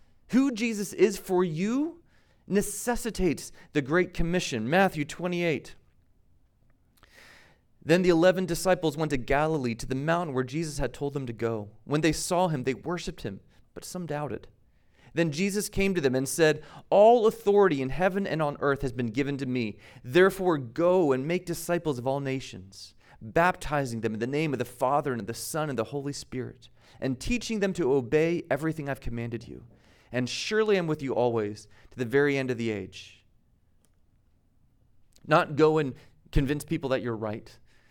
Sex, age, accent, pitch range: male, 40-59, American, 110-160 Hz